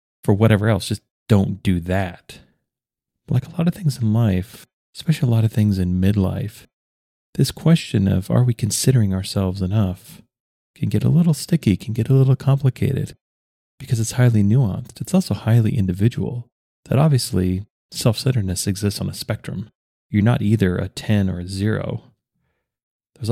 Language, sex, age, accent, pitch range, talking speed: English, male, 30-49, American, 100-125 Hz, 160 wpm